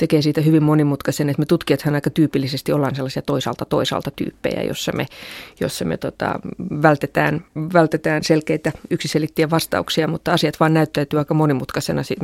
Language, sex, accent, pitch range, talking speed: Finnish, female, native, 140-160 Hz, 140 wpm